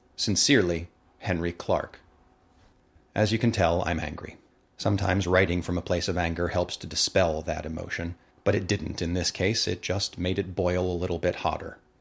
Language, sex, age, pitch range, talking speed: English, male, 30-49, 90-105 Hz, 180 wpm